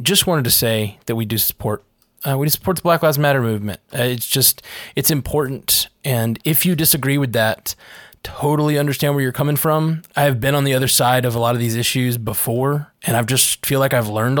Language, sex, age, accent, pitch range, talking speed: English, male, 20-39, American, 120-145 Hz, 220 wpm